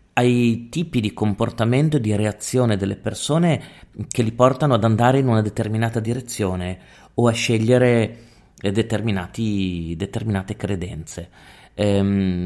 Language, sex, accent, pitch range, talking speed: Italian, male, native, 100-120 Hz, 115 wpm